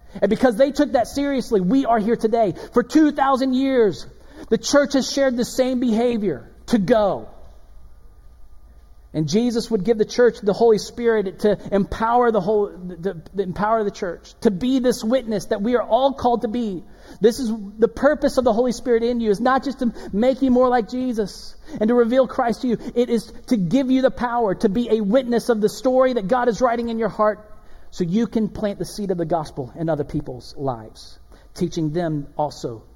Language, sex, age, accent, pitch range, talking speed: English, male, 40-59, American, 180-245 Hz, 205 wpm